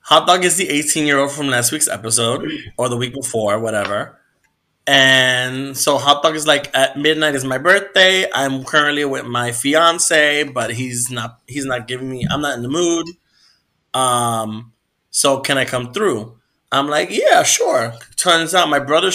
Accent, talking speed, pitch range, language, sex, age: American, 175 wpm, 125-165 Hz, English, male, 20-39